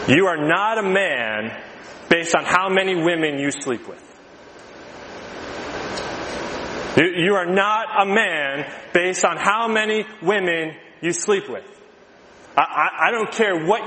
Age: 20-39